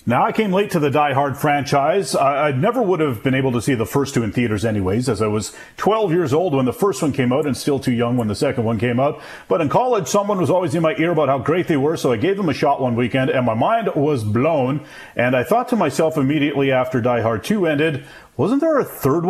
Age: 40-59